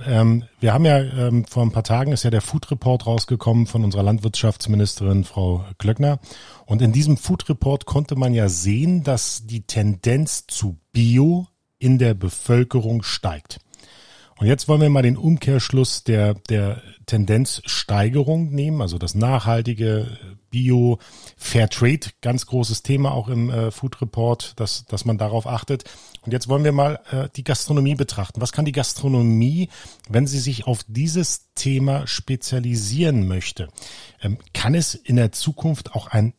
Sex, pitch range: male, 110-135 Hz